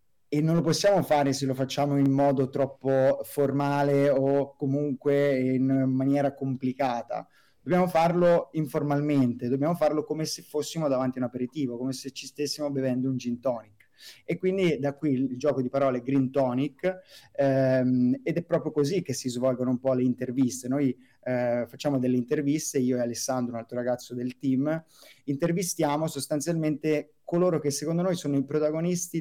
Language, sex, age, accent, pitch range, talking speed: Italian, male, 20-39, native, 125-145 Hz, 165 wpm